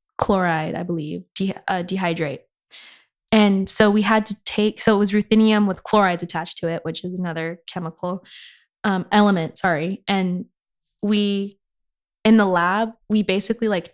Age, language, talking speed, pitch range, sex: 20-39, English, 150 wpm, 175-210 Hz, female